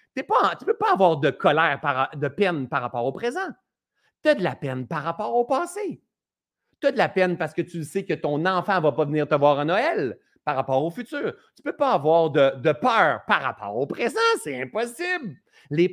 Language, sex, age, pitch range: French, male, 30-49, 135-215 Hz